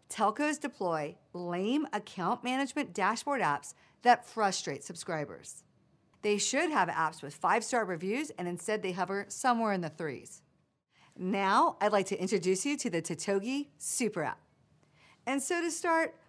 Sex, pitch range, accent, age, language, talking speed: female, 180-250 Hz, American, 50-69, English, 145 wpm